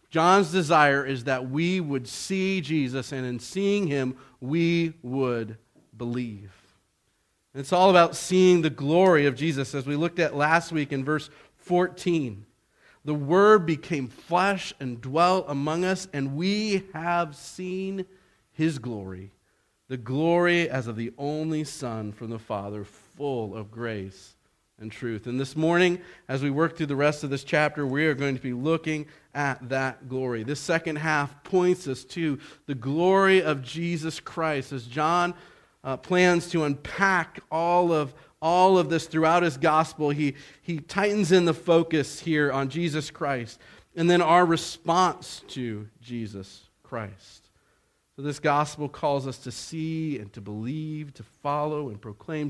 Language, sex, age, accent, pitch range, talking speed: English, male, 40-59, American, 130-170 Hz, 160 wpm